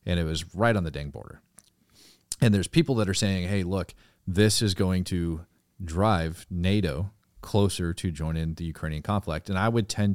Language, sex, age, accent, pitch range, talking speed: English, male, 40-59, American, 85-100 Hz, 190 wpm